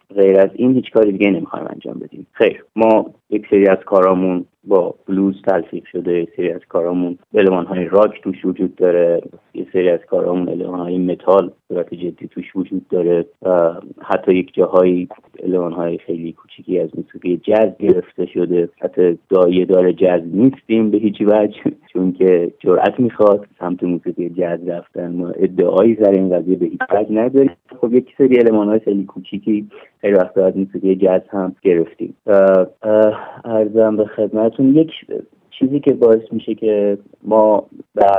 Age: 30-49